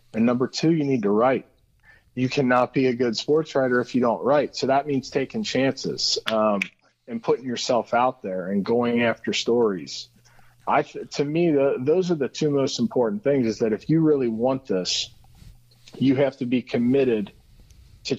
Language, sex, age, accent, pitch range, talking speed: English, male, 40-59, American, 115-140 Hz, 190 wpm